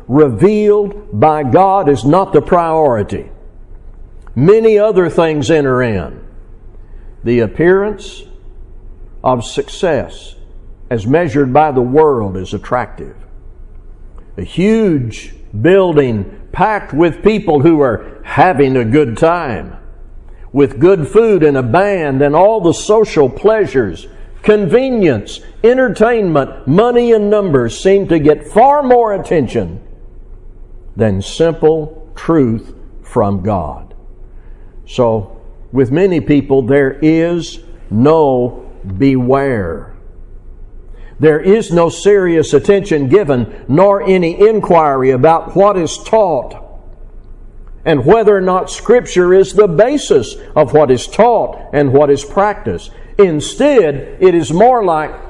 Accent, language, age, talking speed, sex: American, English, 60-79, 115 wpm, male